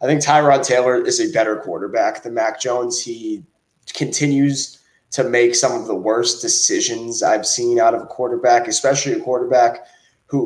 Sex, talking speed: male, 170 wpm